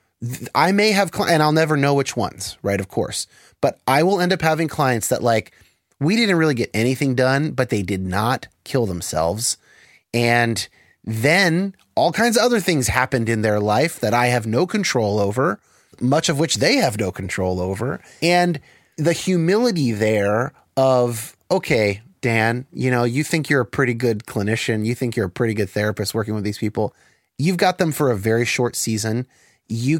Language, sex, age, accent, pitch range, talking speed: English, male, 30-49, American, 115-155 Hz, 190 wpm